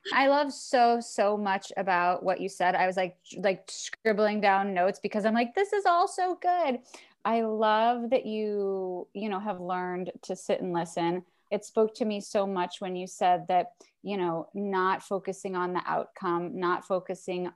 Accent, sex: American, female